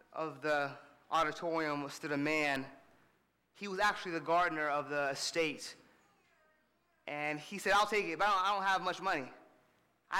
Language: English